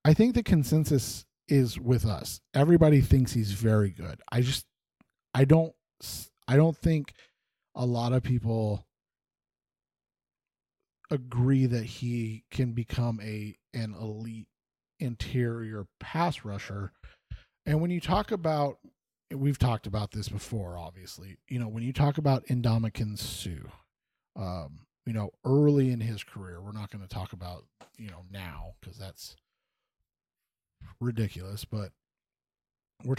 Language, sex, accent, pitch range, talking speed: English, male, American, 105-140 Hz, 135 wpm